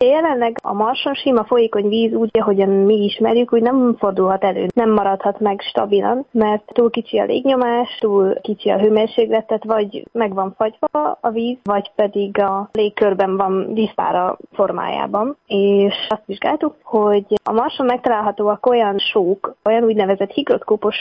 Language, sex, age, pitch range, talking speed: Hungarian, female, 20-39, 200-230 Hz, 145 wpm